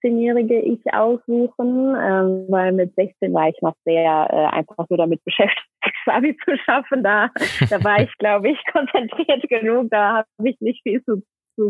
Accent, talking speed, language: German, 175 wpm, German